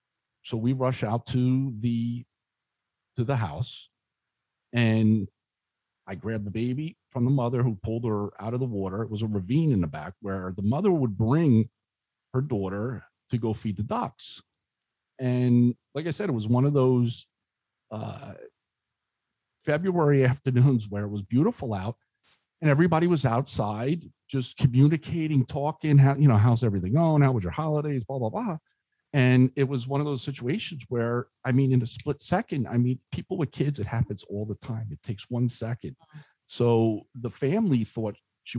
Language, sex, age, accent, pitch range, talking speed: English, male, 50-69, American, 110-135 Hz, 175 wpm